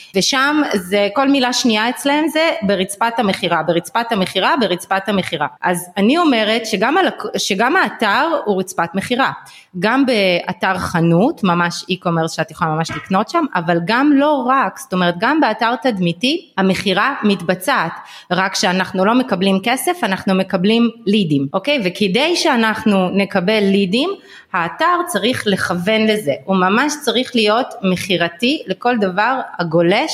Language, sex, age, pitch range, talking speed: Hebrew, female, 30-49, 185-255 Hz, 135 wpm